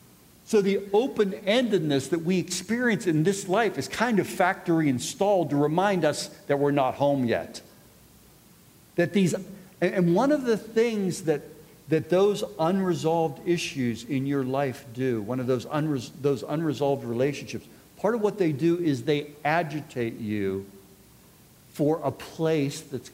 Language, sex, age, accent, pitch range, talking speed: English, male, 50-69, American, 120-160 Hz, 150 wpm